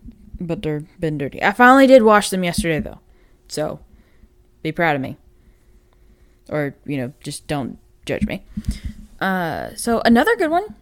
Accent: American